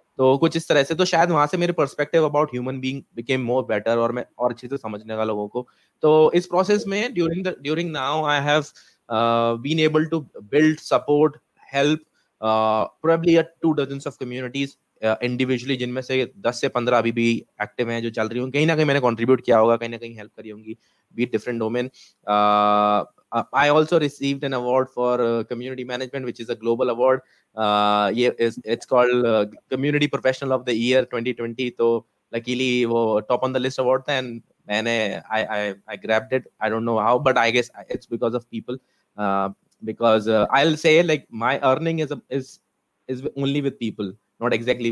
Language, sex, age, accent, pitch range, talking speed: Hindi, male, 20-39, native, 115-140 Hz, 175 wpm